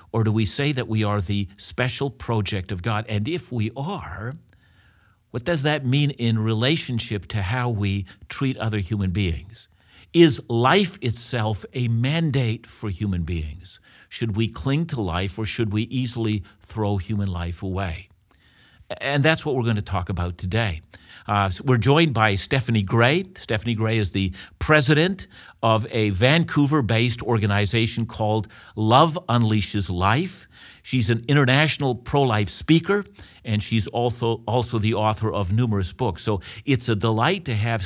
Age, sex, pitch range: 50-69, male, 100-125 Hz